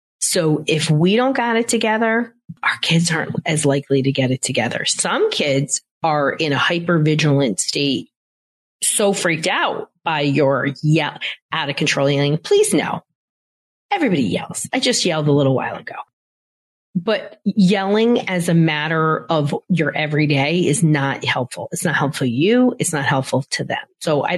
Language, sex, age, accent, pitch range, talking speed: English, female, 30-49, American, 145-185 Hz, 160 wpm